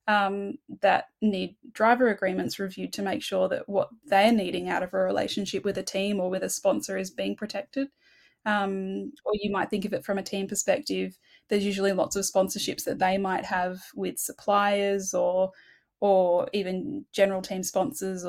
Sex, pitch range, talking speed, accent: female, 185-210 Hz, 180 wpm, Australian